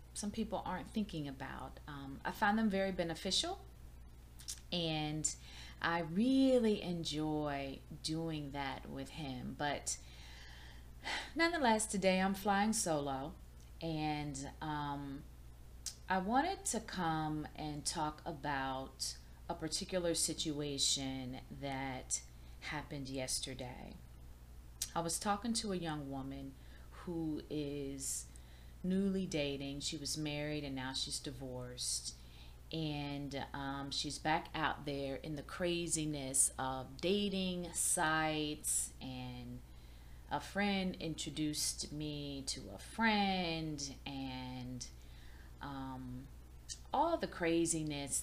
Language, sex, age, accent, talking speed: English, female, 30-49, American, 105 wpm